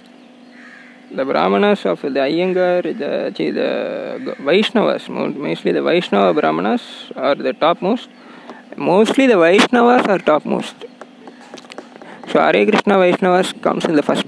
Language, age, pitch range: Tamil, 20-39, 165-245 Hz